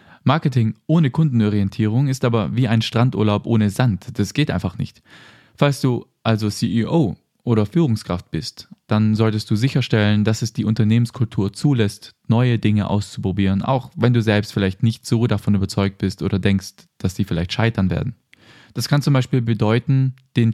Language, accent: German, German